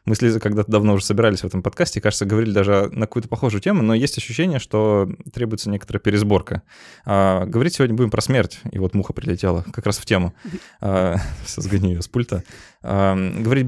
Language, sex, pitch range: Russian, male, 95-110 Hz